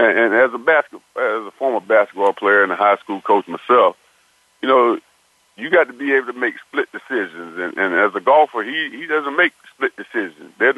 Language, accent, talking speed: English, American, 210 wpm